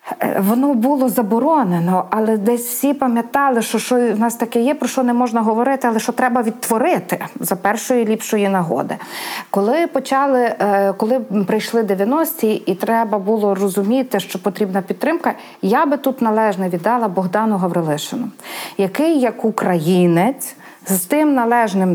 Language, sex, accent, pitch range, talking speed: Ukrainian, female, native, 200-255 Hz, 140 wpm